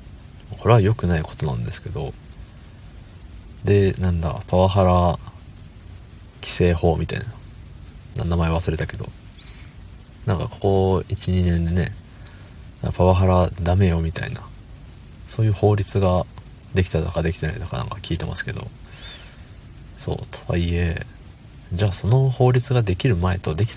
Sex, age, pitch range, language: male, 40-59, 90-110 Hz, Japanese